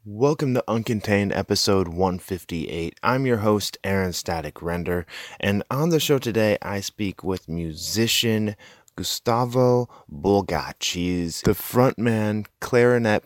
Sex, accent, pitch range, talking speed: male, American, 90-120 Hz, 120 wpm